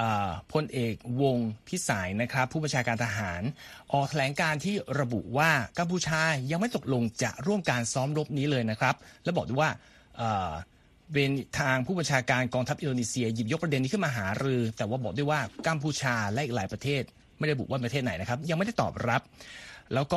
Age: 30-49